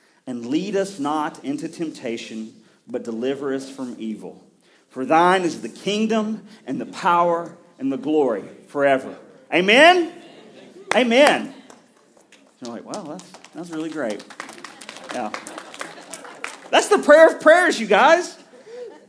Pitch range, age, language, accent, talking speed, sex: 150-230 Hz, 40-59, English, American, 125 wpm, male